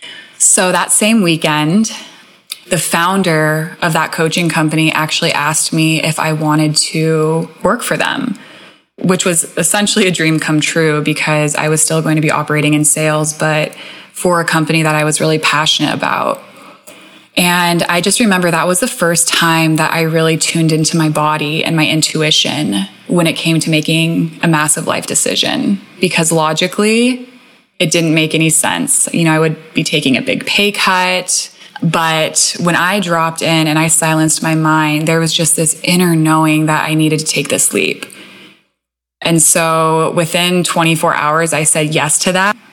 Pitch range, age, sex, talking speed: 155-175 Hz, 20-39, female, 175 wpm